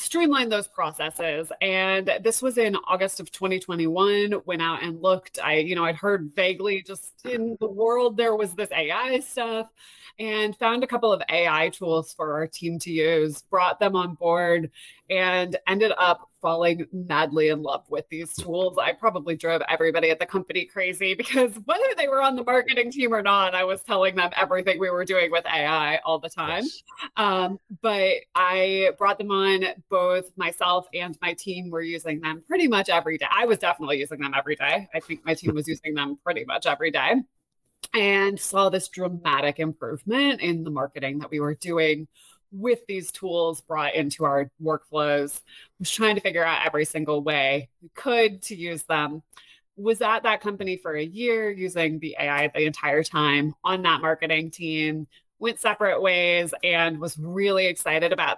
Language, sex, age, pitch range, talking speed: English, female, 20-39, 160-205 Hz, 185 wpm